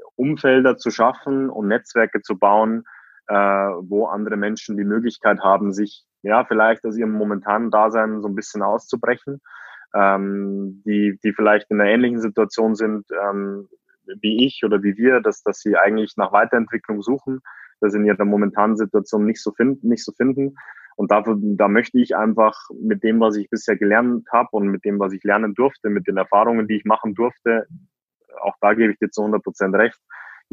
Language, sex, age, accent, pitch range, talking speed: German, male, 20-39, German, 100-115 Hz, 185 wpm